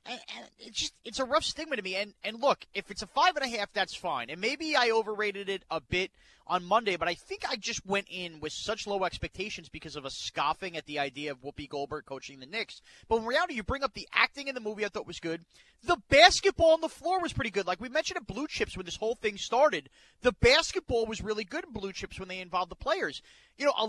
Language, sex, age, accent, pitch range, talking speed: English, male, 30-49, American, 190-280 Hz, 255 wpm